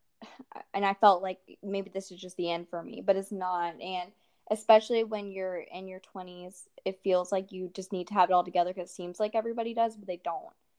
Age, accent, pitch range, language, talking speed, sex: 10-29, American, 180-210 Hz, English, 235 wpm, female